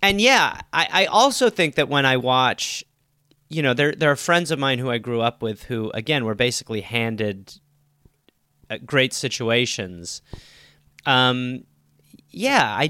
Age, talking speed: 30-49, 155 wpm